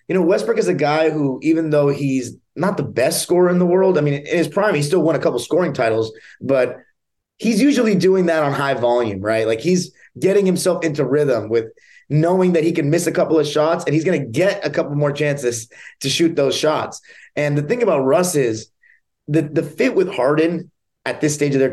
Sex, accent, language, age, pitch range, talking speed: male, American, English, 30-49, 140-180 Hz, 230 wpm